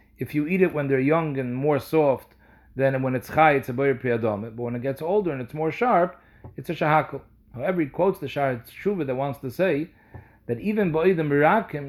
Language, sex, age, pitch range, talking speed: English, male, 40-59, 120-155 Hz, 220 wpm